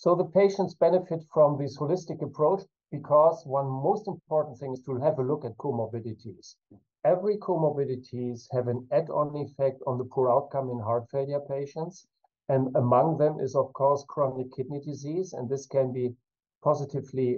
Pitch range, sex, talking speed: 130-150 Hz, male, 165 wpm